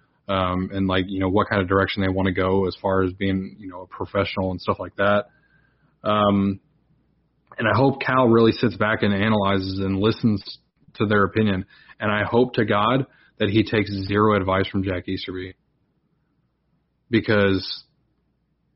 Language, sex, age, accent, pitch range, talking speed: English, male, 20-39, American, 95-115 Hz, 175 wpm